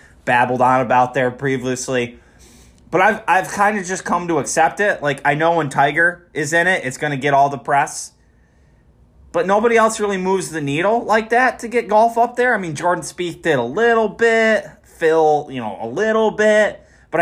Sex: male